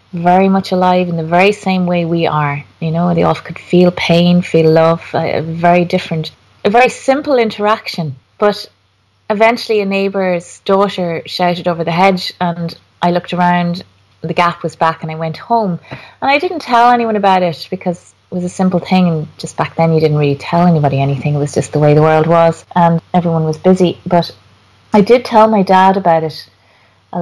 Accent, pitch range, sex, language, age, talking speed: Irish, 155-190 Hz, female, English, 30-49, 205 wpm